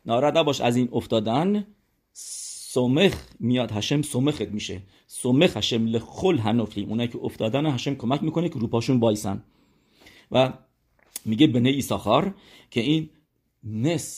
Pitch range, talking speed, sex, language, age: 105-130 Hz, 130 wpm, male, English, 40-59